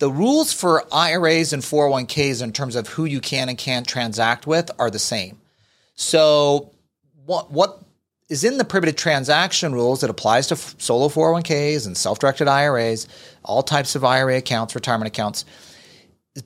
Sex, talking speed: male, 165 wpm